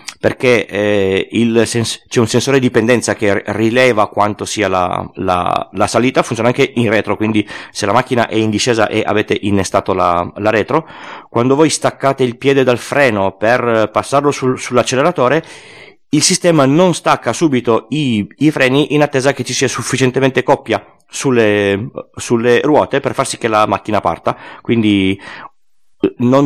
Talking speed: 160 wpm